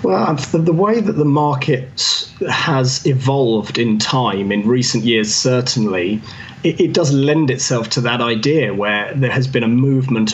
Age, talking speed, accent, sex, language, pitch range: 30-49, 155 wpm, British, male, English, 110-130 Hz